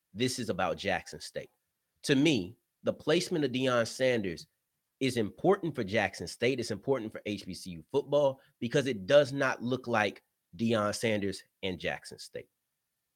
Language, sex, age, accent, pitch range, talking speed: English, male, 30-49, American, 115-150 Hz, 150 wpm